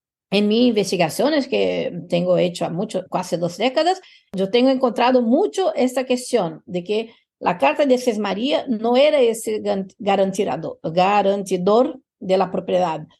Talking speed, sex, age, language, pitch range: 135 wpm, female, 50-69, Spanish, 195-270 Hz